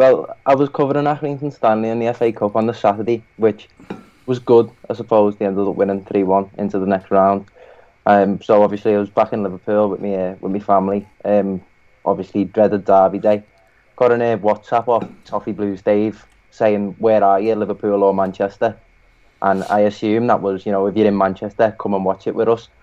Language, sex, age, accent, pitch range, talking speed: English, male, 20-39, British, 100-115 Hz, 200 wpm